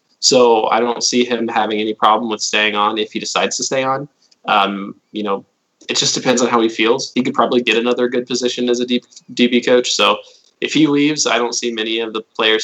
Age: 20-39